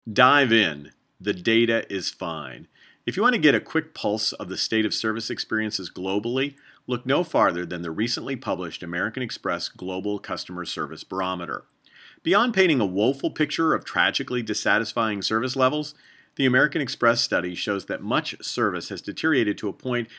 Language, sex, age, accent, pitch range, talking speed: English, male, 40-59, American, 95-125 Hz, 165 wpm